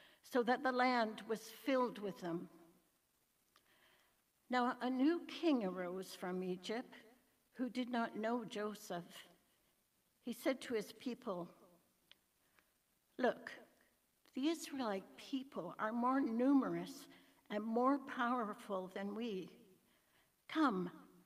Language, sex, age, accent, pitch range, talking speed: English, female, 60-79, American, 200-250 Hz, 105 wpm